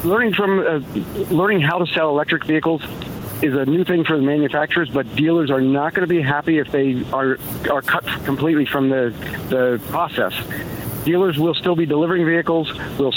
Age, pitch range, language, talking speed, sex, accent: 50-69, 130-160 Hz, English, 185 wpm, male, American